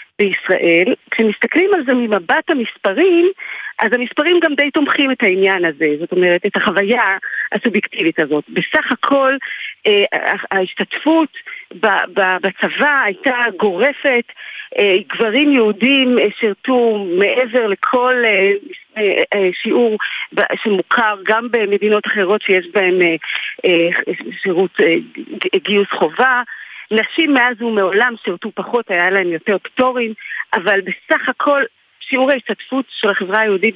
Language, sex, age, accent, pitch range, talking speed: Hebrew, female, 40-59, native, 195-285 Hz, 105 wpm